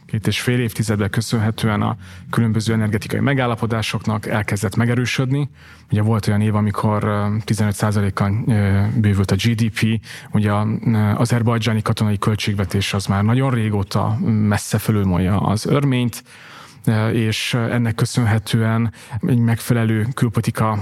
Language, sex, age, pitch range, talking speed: Hungarian, male, 30-49, 105-120 Hz, 110 wpm